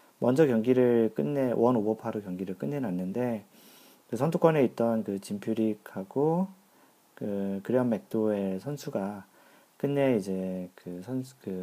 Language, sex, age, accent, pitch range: Korean, male, 40-59, native, 100-140 Hz